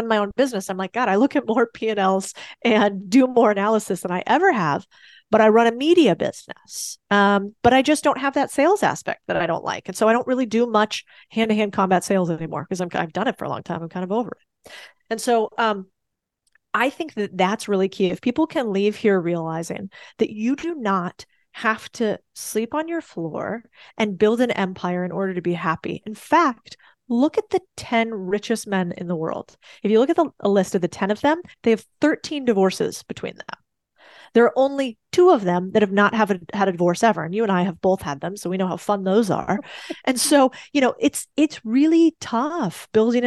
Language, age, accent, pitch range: English, 30-49, American, 195-255 Hz